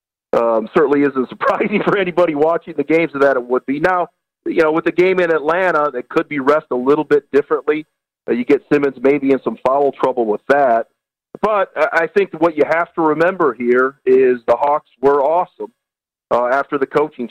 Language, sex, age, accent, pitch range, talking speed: English, male, 40-59, American, 130-165 Hz, 200 wpm